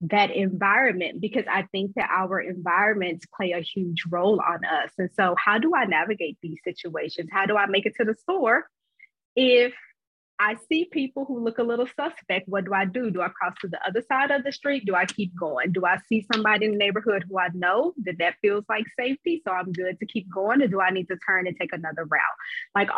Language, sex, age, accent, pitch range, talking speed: English, female, 20-39, American, 185-220 Hz, 230 wpm